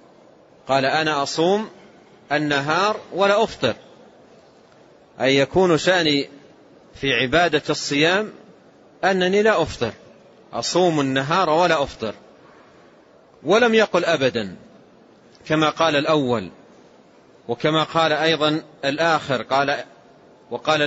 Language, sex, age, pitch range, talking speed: Arabic, male, 40-59, 145-175 Hz, 90 wpm